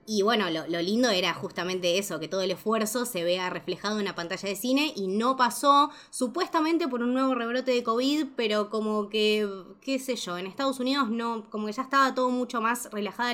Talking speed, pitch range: 215 wpm, 185-235 Hz